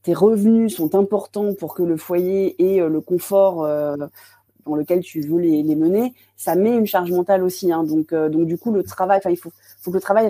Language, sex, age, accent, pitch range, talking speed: French, female, 30-49, French, 165-210 Hz, 220 wpm